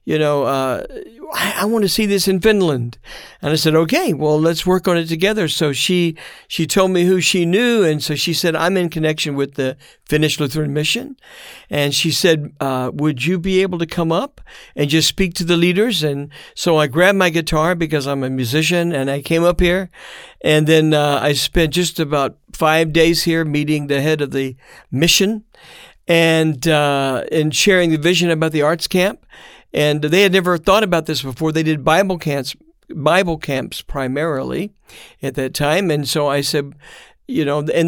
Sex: male